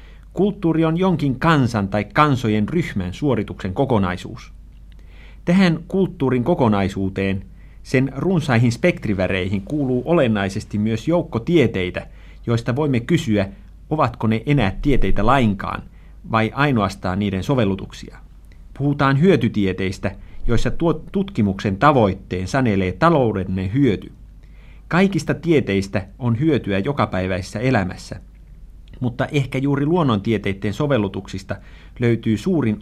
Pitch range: 95-140 Hz